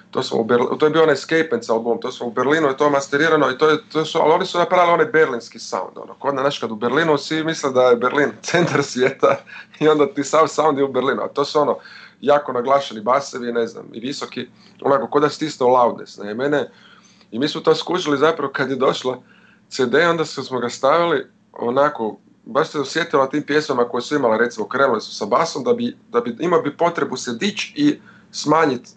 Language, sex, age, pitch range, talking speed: Croatian, male, 30-49, 125-160 Hz, 215 wpm